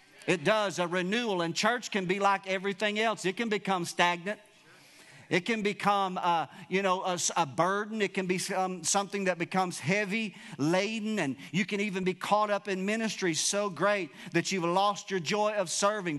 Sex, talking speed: male, 185 wpm